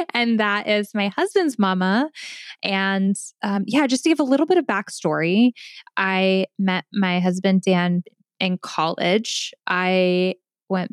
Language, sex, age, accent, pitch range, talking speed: English, female, 10-29, American, 180-215 Hz, 145 wpm